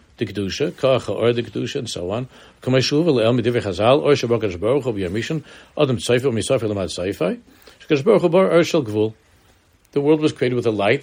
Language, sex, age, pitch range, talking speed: English, male, 60-79, 100-145 Hz, 70 wpm